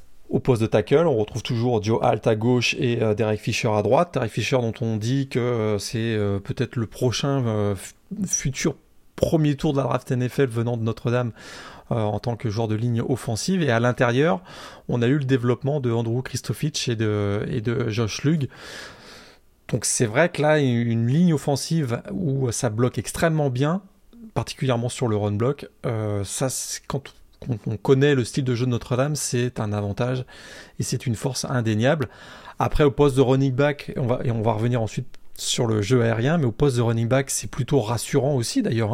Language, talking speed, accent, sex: French, 200 wpm, French, male